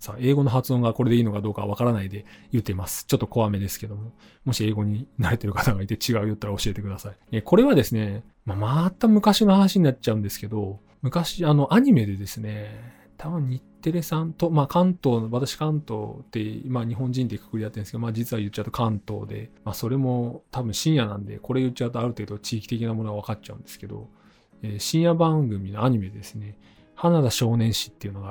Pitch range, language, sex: 105-140 Hz, Japanese, male